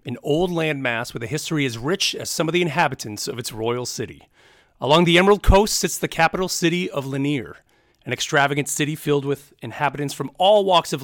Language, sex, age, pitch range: English, male, 40-59, 130-170 Hz